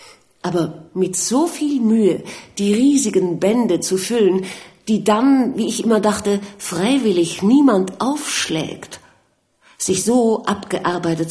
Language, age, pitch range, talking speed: German, 50-69, 155-205 Hz, 115 wpm